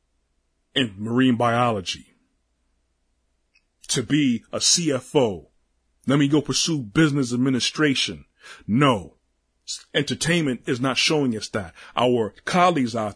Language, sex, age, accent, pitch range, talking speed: English, male, 30-49, American, 85-130 Hz, 105 wpm